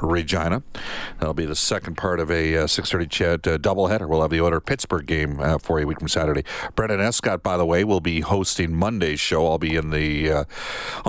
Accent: American